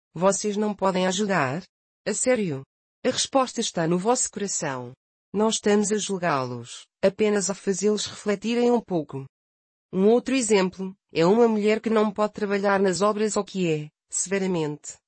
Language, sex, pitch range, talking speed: Portuguese, female, 175-215 Hz, 150 wpm